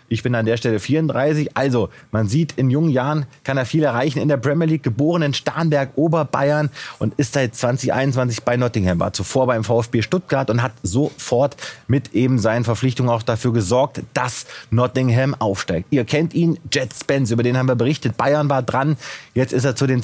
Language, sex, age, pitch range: German, male, 30-49, 120-145 Hz